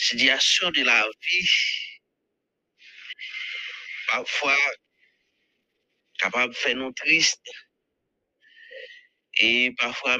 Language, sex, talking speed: English, male, 70 wpm